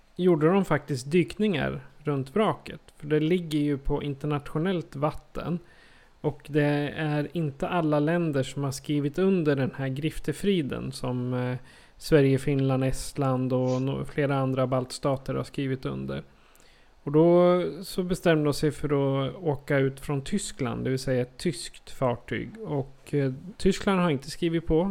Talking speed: 145 wpm